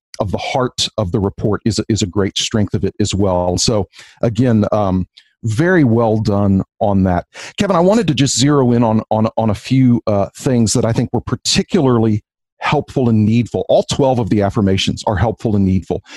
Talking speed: 195 wpm